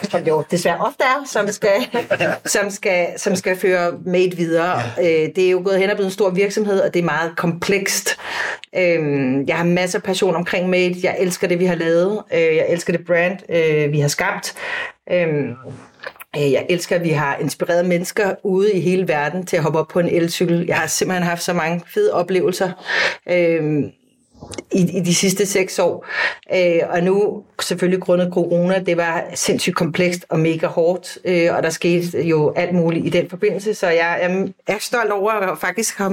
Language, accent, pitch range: Danish, native, 170-205 Hz